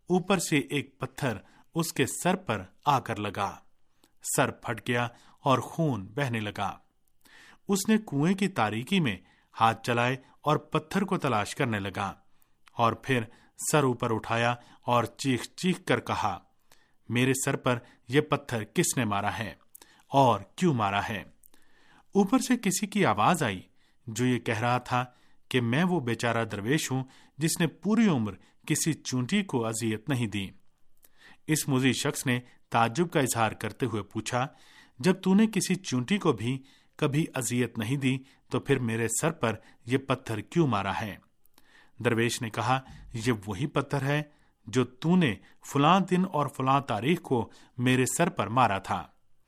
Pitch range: 115-160 Hz